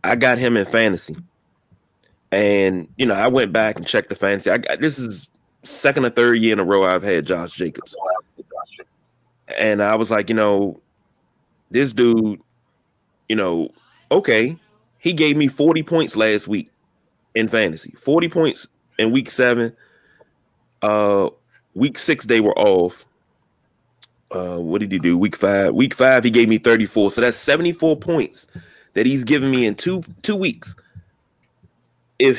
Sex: male